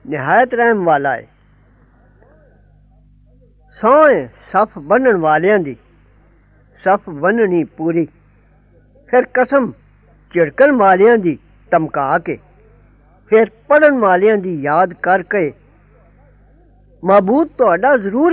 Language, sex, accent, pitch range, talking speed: English, female, Indian, 160-240 Hz, 85 wpm